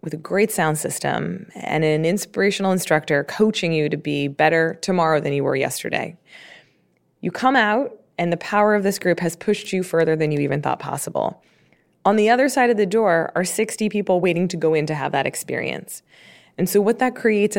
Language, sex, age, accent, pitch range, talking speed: English, female, 20-39, American, 155-210 Hz, 205 wpm